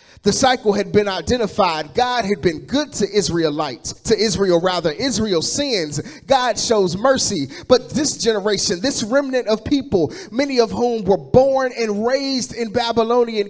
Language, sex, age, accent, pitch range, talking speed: English, male, 30-49, American, 190-245 Hz, 155 wpm